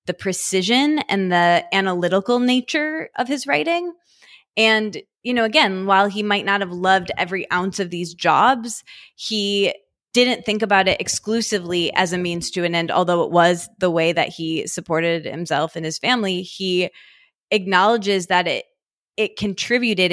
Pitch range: 175-220 Hz